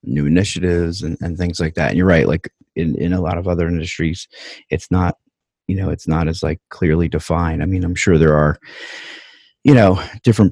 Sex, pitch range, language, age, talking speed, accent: male, 75-95 Hz, English, 40-59, 210 wpm, American